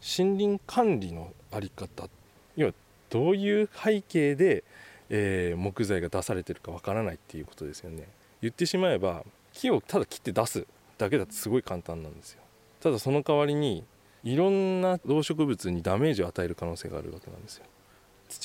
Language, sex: Japanese, male